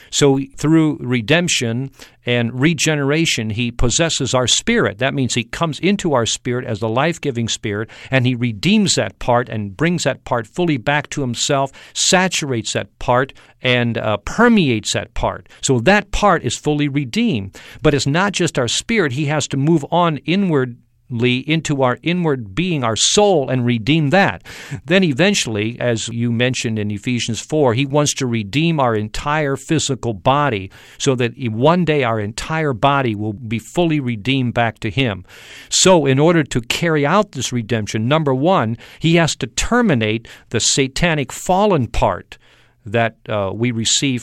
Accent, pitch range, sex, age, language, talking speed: American, 115-155 Hz, male, 50-69, English, 165 wpm